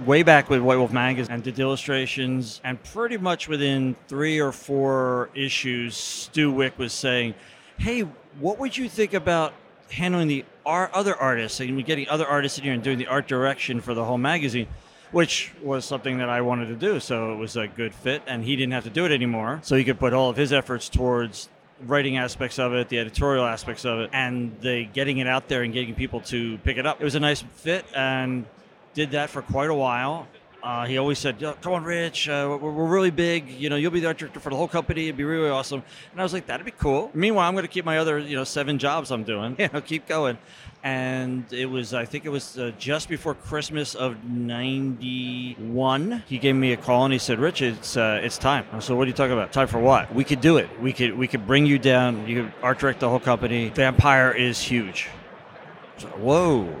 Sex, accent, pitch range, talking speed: male, American, 125-150 Hz, 235 wpm